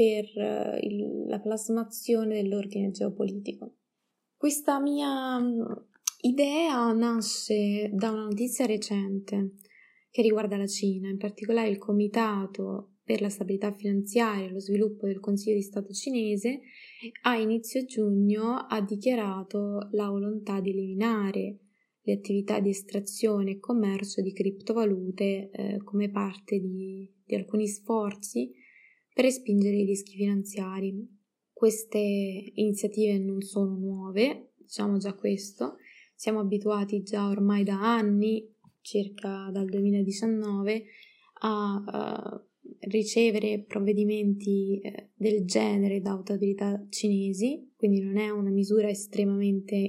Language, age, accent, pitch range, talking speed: Italian, 20-39, native, 200-225 Hz, 110 wpm